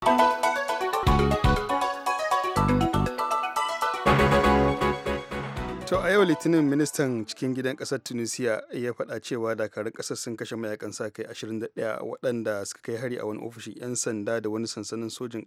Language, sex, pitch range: English, male, 110-125 Hz